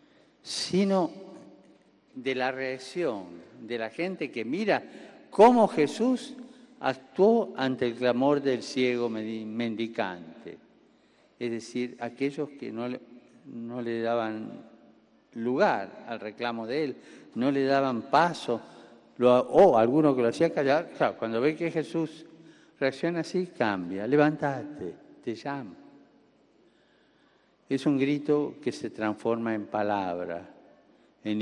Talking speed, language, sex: 115 wpm, Spanish, male